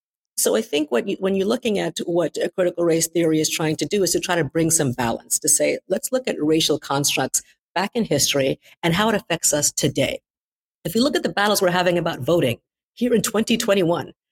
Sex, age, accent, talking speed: female, 50-69, American, 220 wpm